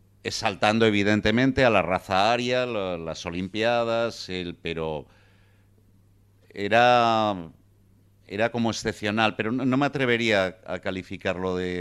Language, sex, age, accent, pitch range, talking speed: Spanish, male, 50-69, Spanish, 95-115 Hz, 115 wpm